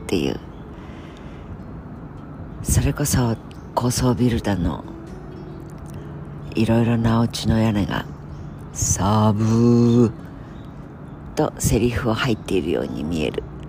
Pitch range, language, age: 100-125 Hz, Japanese, 50-69